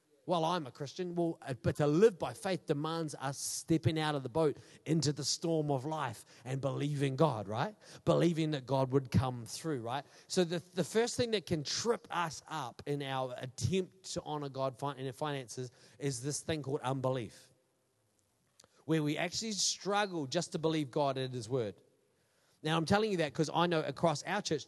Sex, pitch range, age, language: male, 135-175 Hz, 30-49, English